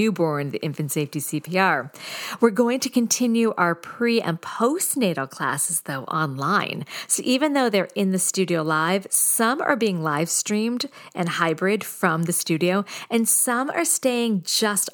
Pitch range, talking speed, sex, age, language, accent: 160-215 Hz, 155 wpm, female, 50-69, English, American